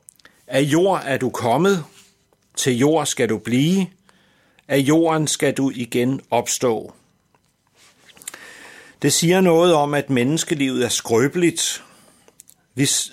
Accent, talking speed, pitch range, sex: native, 115 wpm, 120-150 Hz, male